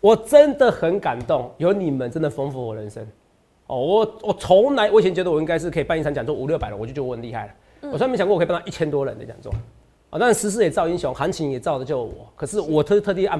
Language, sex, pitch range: Chinese, male, 125-170 Hz